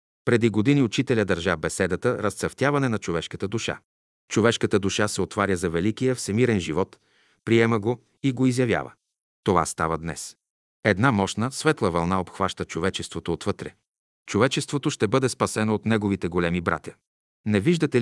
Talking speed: 140 wpm